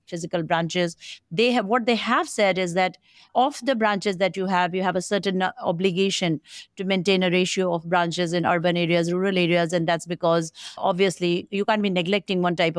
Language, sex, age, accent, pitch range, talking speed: English, female, 50-69, Indian, 175-210 Hz, 195 wpm